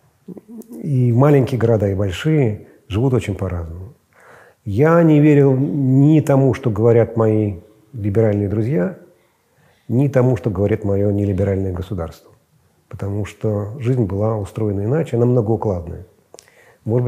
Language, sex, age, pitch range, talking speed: Russian, male, 40-59, 105-135 Hz, 120 wpm